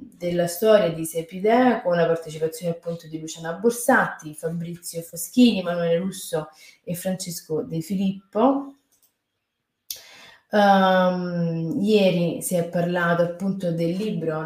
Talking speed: 110 wpm